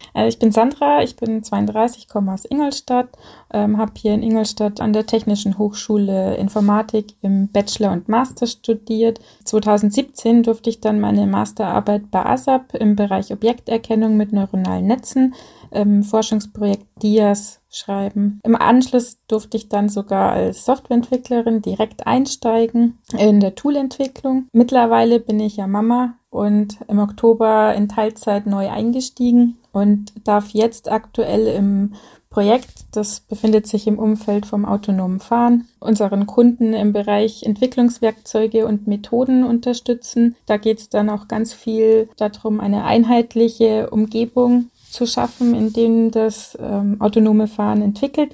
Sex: female